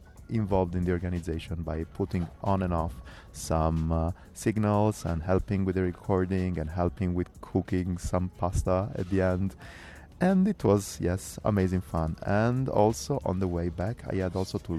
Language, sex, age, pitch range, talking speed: English, male, 30-49, 85-105 Hz, 170 wpm